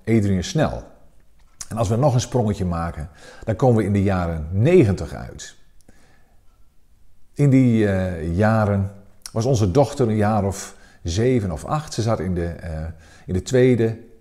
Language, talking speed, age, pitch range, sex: Dutch, 155 wpm, 50-69, 95-135 Hz, male